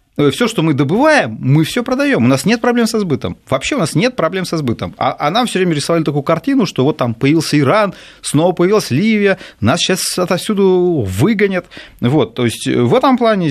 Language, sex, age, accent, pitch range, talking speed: Russian, male, 30-49, native, 135-205 Hz, 200 wpm